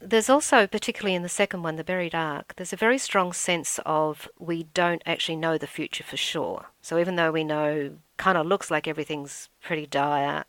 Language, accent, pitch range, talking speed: English, Australian, 155-185 Hz, 205 wpm